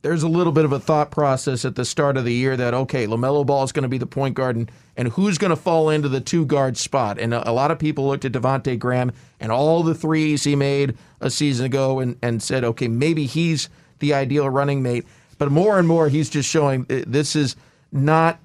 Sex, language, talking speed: male, English, 240 wpm